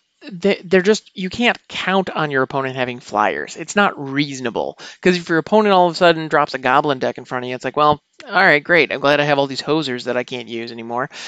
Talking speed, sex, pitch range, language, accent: 250 wpm, male, 125-170 Hz, English, American